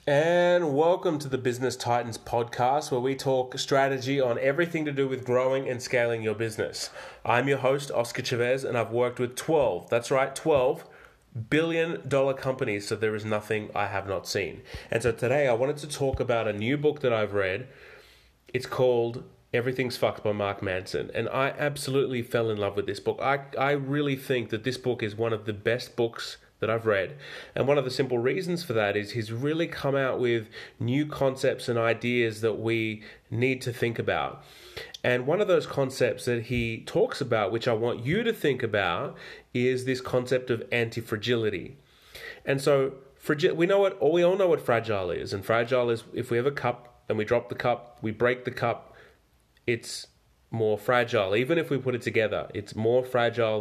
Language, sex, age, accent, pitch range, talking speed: English, male, 20-39, Australian, 115-135 Hz, 200 wpm